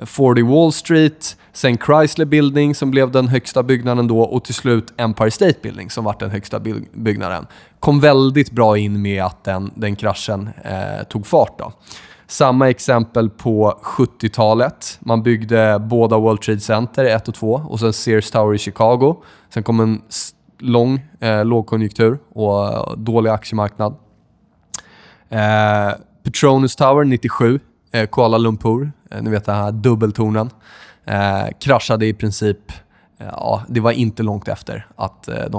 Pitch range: 110-130 Hz